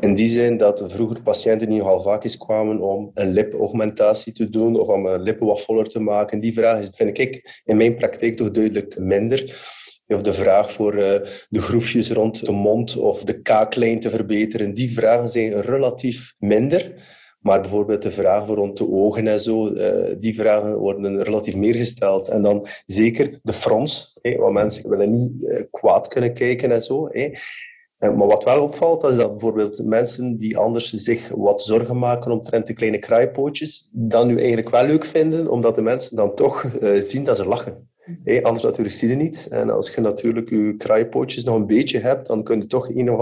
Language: Dutch